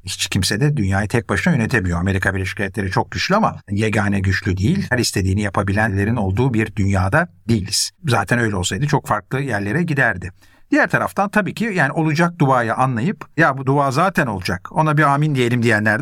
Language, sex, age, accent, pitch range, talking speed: Turkish, male, 60-79, native, 100-140 Hz, 180 wpm